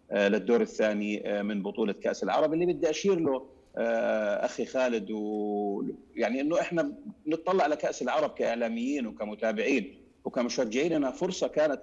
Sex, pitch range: male, 115-160 Hz